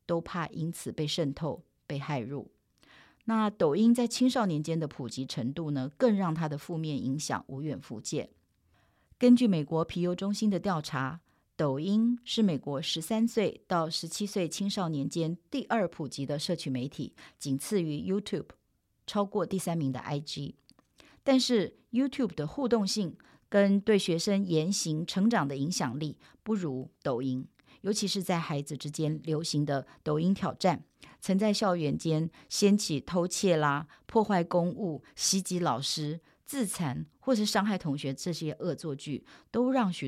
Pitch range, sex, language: 150-205 Hz, female, Chinese